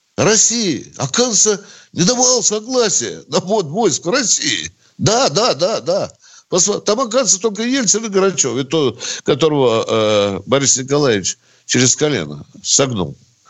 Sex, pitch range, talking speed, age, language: male, 120-200 Hz, 120 wpm, 60-79, Russian